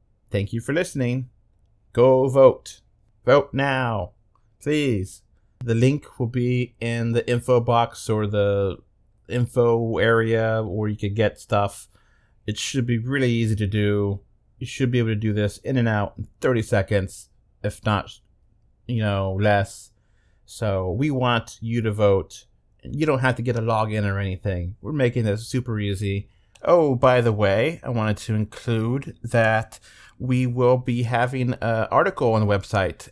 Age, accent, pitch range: 30-49, American, 100-120 Hz